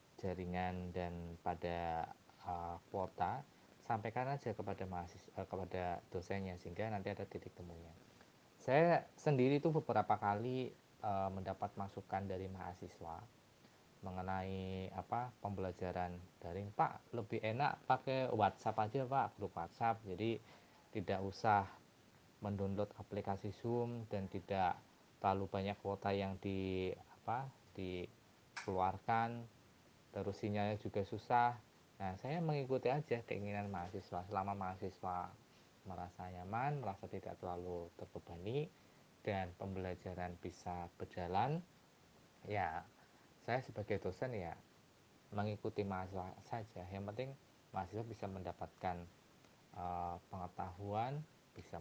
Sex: male